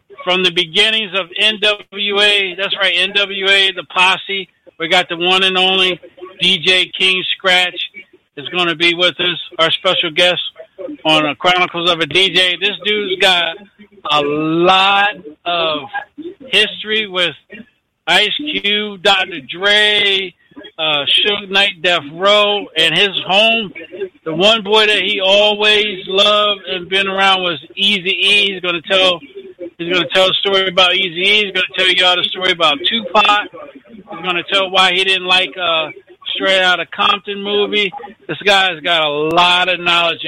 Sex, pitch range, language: male, 175-200 Hz, English